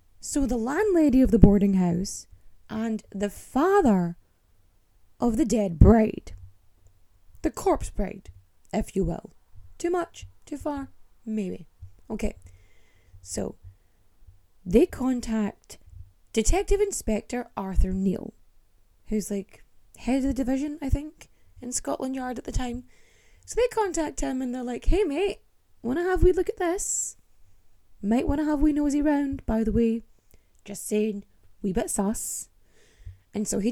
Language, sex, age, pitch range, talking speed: English, female, 20-39, 185-285 Hz, 145 wpm